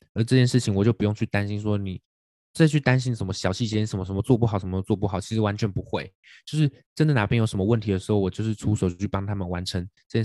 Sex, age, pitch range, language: male, 20-39, 95-120 Hz, Chinese